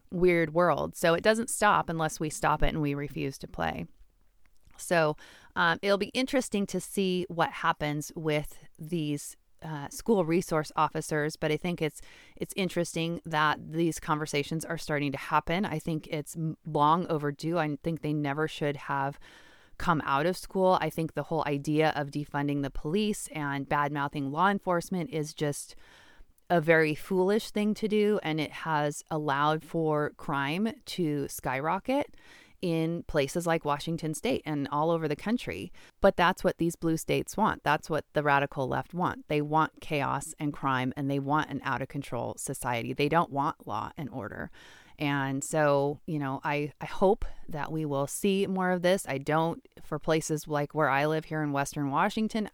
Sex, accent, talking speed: female, American, 175 wpm